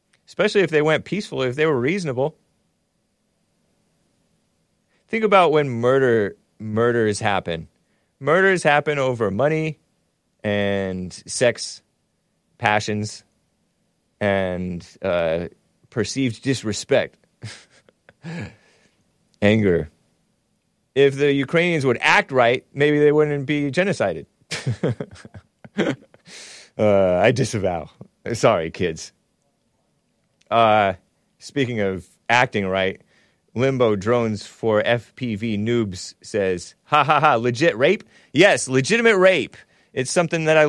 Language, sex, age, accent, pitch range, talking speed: English, male, 30-49, American, 110-150 Hz, 95 wpm